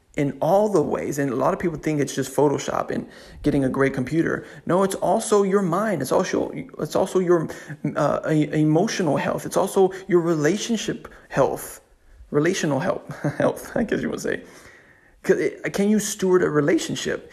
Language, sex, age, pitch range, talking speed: English, male, 30-49, 145-200 Hz, 175 wpm